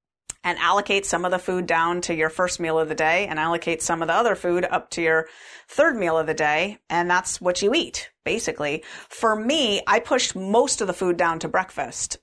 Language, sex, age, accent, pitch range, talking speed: English, female, 30-49, American, 170-210 Hz, 225 wpm